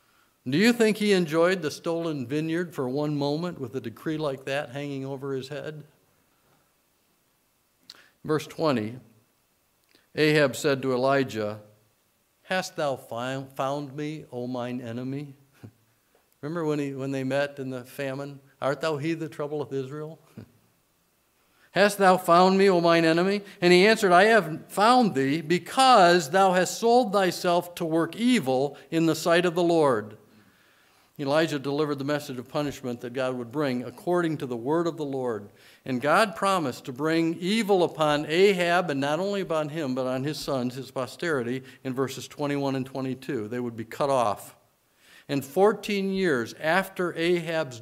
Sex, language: male, English